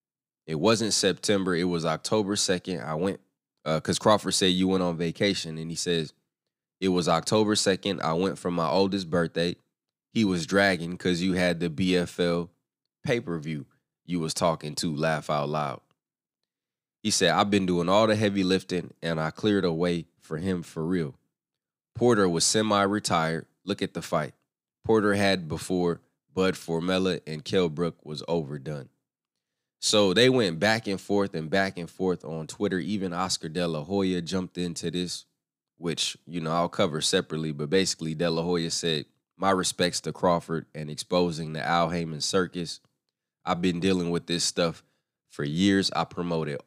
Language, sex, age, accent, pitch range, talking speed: English, male, 20-39, American, 80-95 Hz, 170 wpm